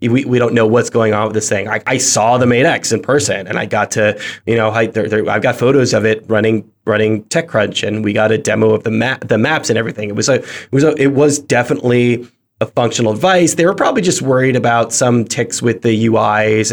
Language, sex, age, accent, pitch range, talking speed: English, male, 20-39, American, 110-130 Hz, 250 wpm